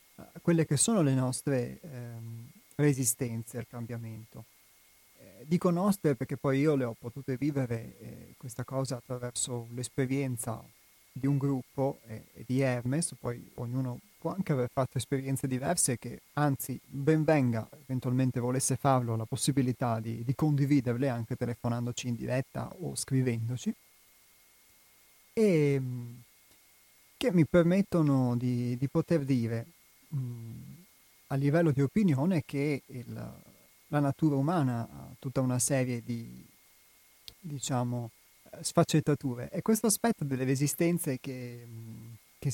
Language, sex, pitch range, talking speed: Italian, male, 120-150 Hz, 125 wpm